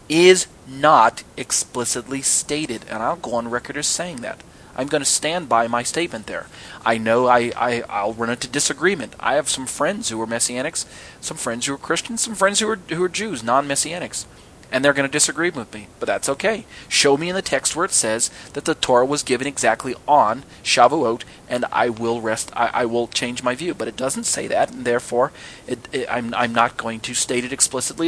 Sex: male